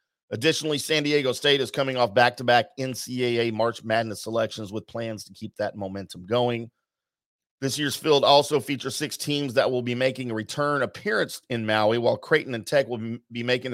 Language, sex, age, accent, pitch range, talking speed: English, male, 40-59, American, 110-140 Hz, 185 wpm